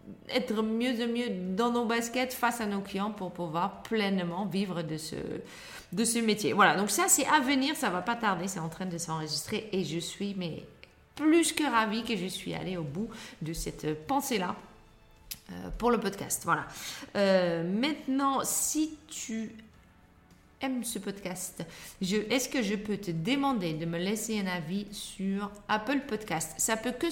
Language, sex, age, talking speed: French, female, 30-49, 180 wpm